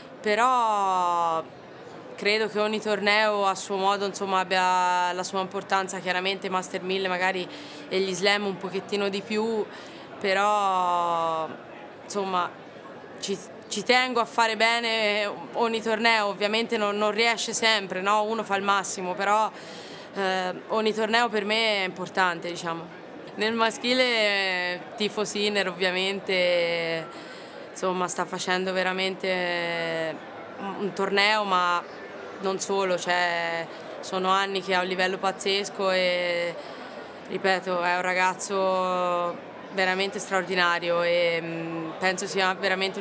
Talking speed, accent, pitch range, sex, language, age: 120 wpm, native, 180-205 Hz, female, Italian, 20-39